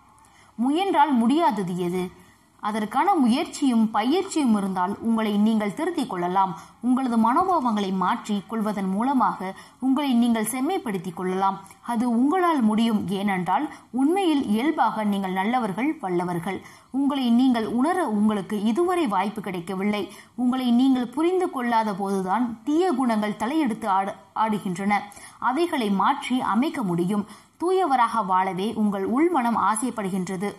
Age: 20-39